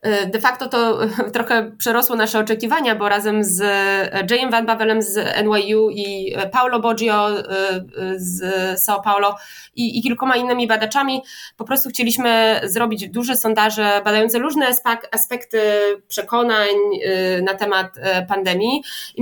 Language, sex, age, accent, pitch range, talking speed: Polish, female, 20-39, native, 210-250 Hz, 125 wpm